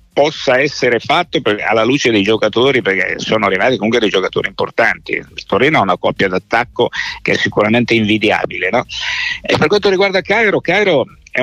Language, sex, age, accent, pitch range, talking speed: Italian, male, 60-79, native, 110-150 Hz, 165 wpm